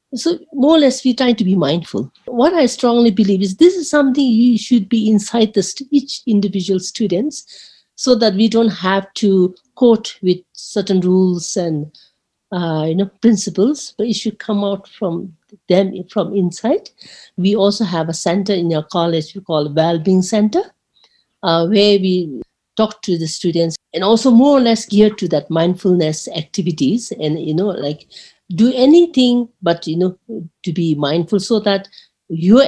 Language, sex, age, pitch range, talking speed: English, female, 50-69, 180-230 Hz, 175 wpm